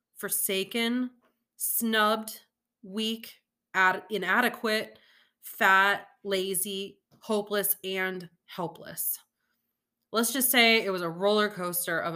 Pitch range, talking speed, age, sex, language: 190-240 Hz, 90 wpm, 30-49, female, English